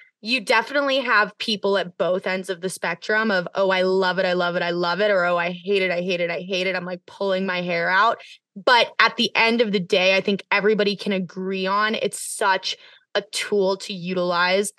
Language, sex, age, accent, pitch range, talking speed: English, female, 20-39, American, 190-235 Hz, 230 wpm